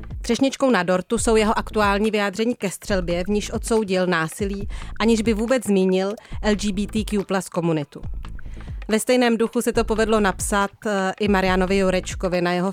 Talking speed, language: 145 wpm, Czech